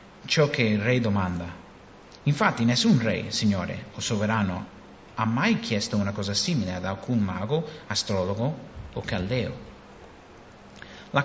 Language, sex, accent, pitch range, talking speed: English, male, Italian, 100-125 Hz, 130 wpm